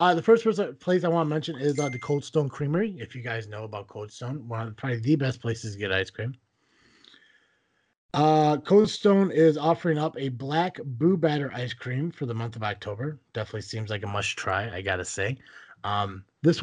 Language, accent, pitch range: English, American, 120-175 Hz